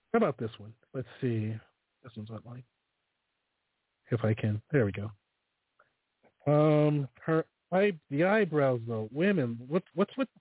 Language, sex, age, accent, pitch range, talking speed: English, male, 40-59, American, 120-165 Hz, 150 wpm